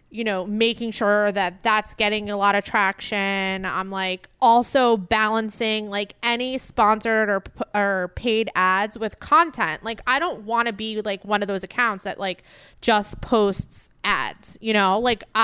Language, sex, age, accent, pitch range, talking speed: English, female, 20-39, American, 195-235 Hz, 165 wpm